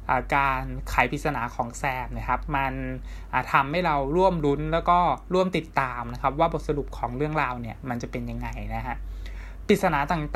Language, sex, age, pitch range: Thai, male, 20-39, 125-160 Hz